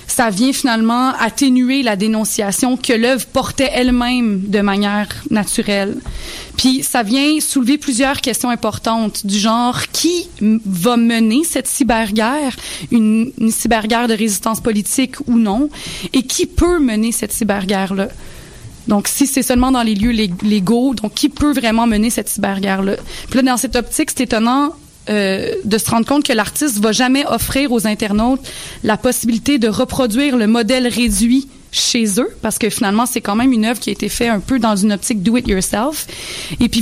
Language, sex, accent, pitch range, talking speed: French, female, Canadian, 220-270 Hz, 180 wpm